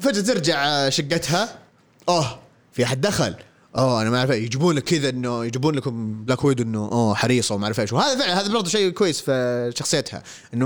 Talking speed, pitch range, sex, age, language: 190 wpm, 115-175 Hz, male, 20-39, Arabic